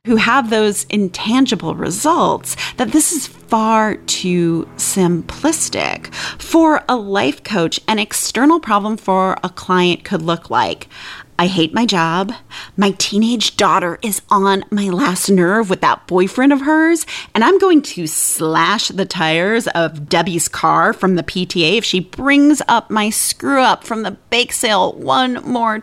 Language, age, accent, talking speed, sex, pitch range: English, 30-49, American, 155 wpm, female, 185-290 Hz